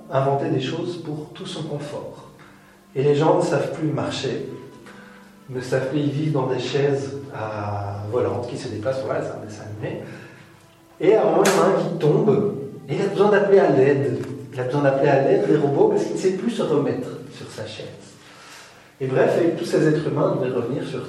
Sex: male